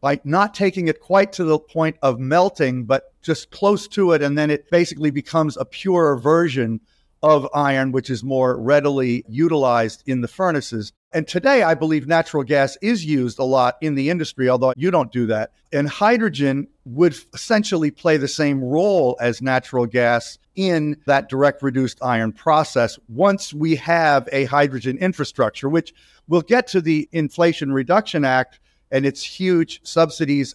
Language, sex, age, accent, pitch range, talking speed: English, male, 50-69, American, 130-170 Hz, 170 wpm